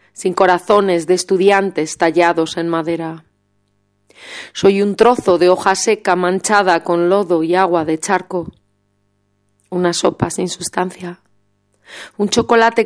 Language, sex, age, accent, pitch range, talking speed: Spanish, female, 30-49, Spanish, 165-205 Hz, 120 wpm